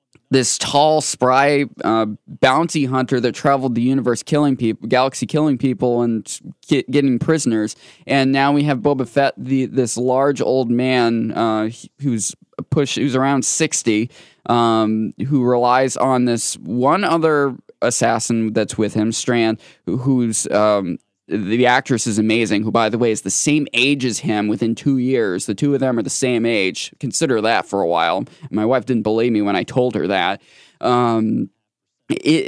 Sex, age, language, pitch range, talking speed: male, 20-39, English, 115-150 Hz, 165 wpm